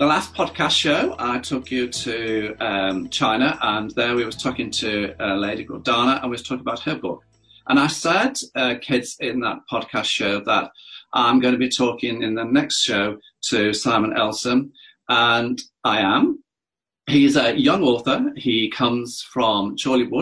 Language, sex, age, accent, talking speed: English, male, 40-59, British, 180 wpm